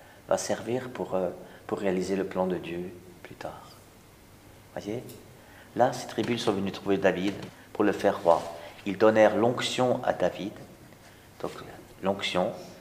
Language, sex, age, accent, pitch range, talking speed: French, male, 50-69, French, 95-120 Hz, 145 wpm